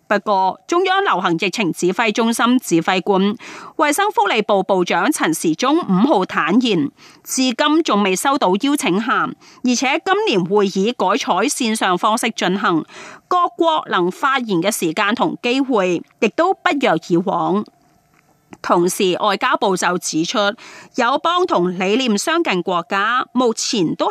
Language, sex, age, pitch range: Chinese, female, 30-49, 195-320 Hz